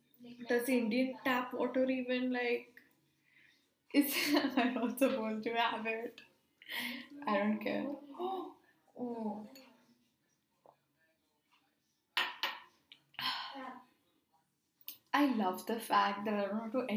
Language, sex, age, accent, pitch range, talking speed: English, female, 10-29, Indian, 230-280 Hz, 90 wpm